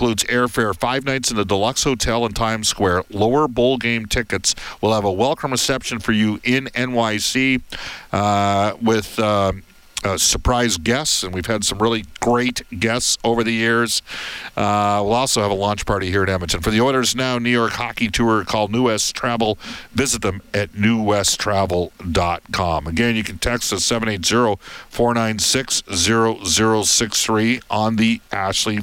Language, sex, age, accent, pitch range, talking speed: English, male, 50-69, American, 100-120 Hz, 155 wpm